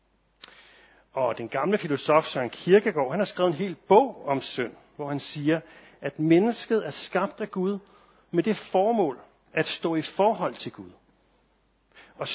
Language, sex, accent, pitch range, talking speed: Danish, male, native, 125-175 Hz, 160 wpm